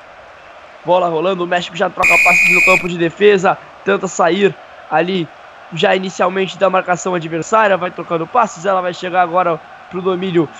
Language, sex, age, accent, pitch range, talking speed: Portuguese, male, 20-39, Brazilian, 175-195 Hz, 165 wpm